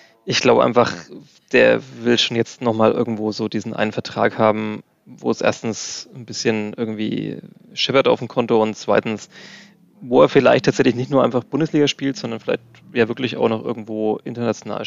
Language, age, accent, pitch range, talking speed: German, 20-39, German, 105-120 Hz, 175 wpm